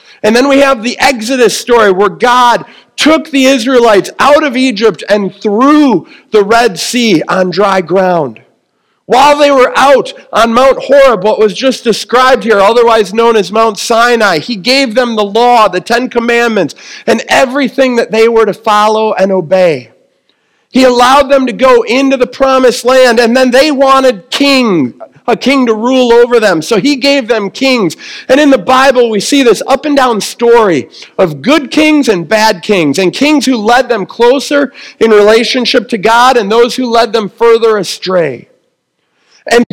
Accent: American